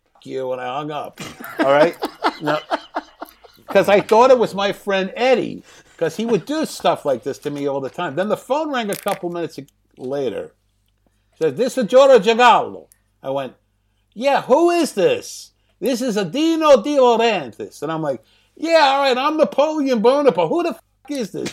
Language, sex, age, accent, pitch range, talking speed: English, male, 60-79, American, 145-240 Hz, 180 wpm